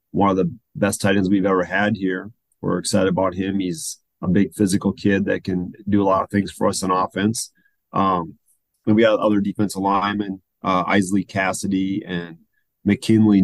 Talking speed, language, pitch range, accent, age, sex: 190 wpm, English, 95-110 Hz, American, 30-49, male